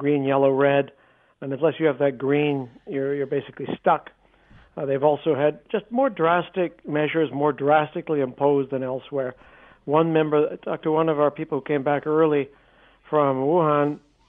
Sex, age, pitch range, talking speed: male, 60-79, 140-160 Hz, 170 wpm